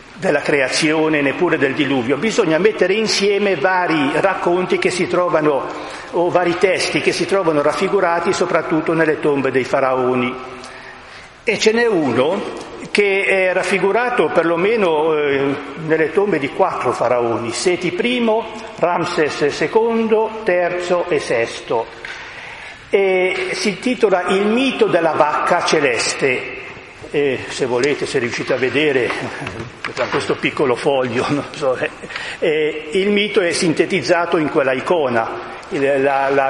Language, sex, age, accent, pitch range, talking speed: Italian, male, 50-69, native, 155-220 Hz, 120 wpm